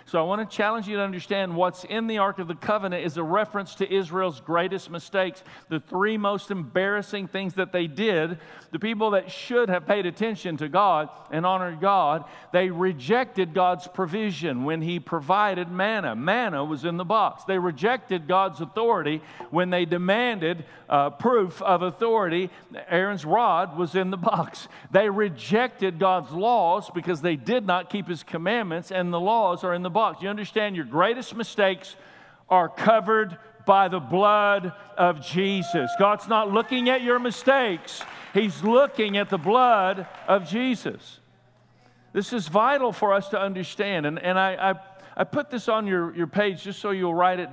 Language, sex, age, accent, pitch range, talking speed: English, male, 50-69, American, 175-205 Hz, 175 wpm